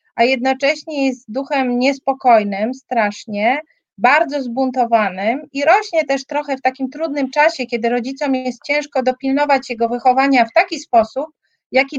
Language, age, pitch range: Polish, 40-59, 235-280 Hz